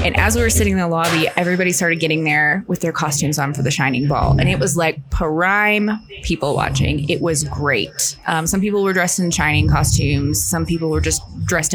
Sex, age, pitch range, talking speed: female, 20-39, 150-190 Hz, 220 wpm